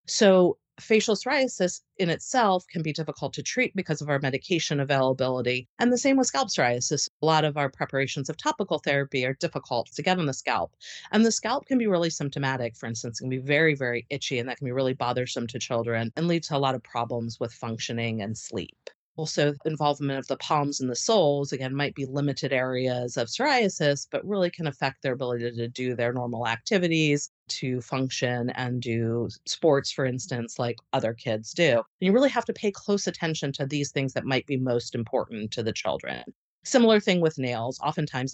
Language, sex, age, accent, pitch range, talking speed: English, female, 40-59, American, 125-165 Hz, 205 wpm